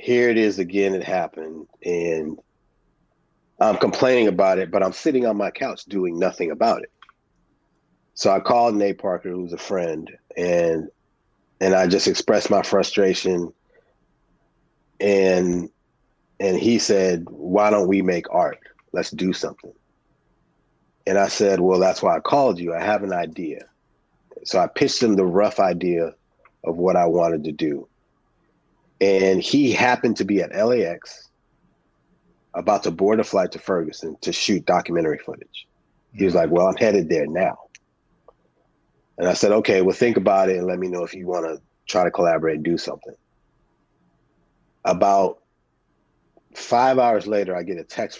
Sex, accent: male, American